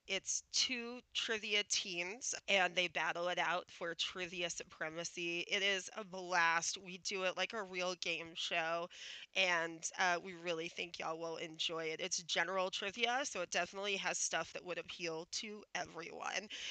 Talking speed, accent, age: 165 wpm, American, 20-39